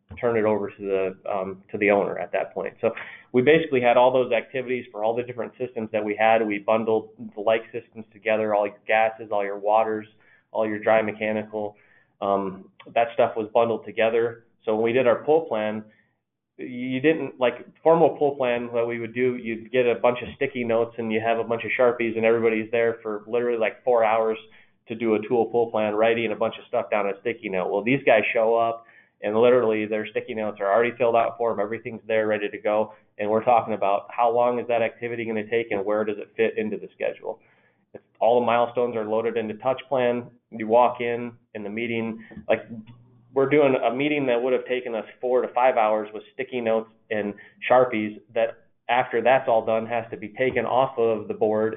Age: 20-39